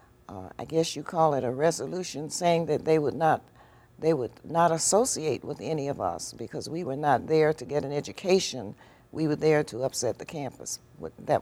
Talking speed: 200 wpm